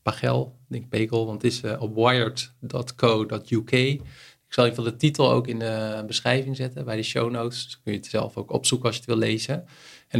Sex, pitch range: male, 110-130 Hz